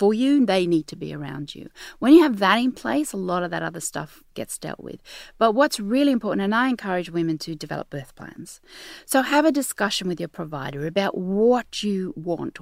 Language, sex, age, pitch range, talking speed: English, female, 40-59, 155-215 Hz, 220 wpm